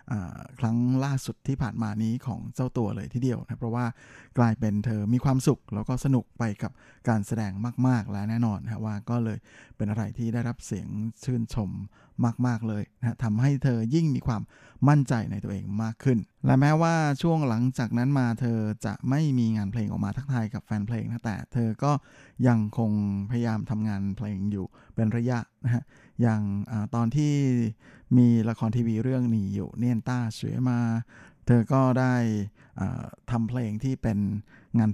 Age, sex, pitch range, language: 20-39, male, 110-130 Hz, Thai